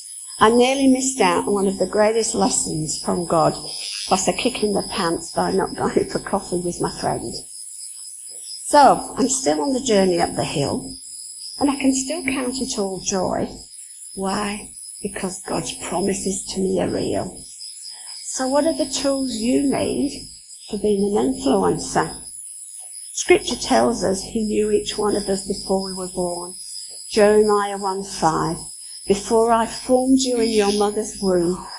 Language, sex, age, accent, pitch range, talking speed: English, female, 50-69, British, 185-225 Hz, 160 wpm